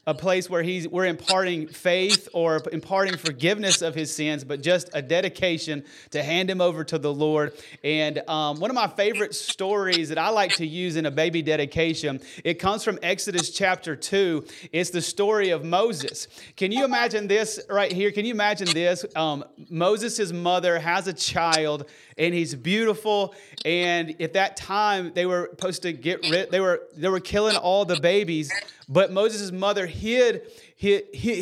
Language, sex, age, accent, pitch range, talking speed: English, male, 30-49, American, 165-205 Hz, 180 wpm